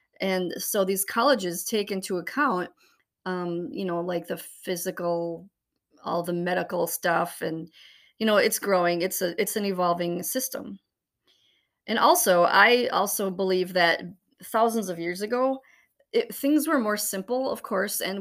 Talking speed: 150 wpm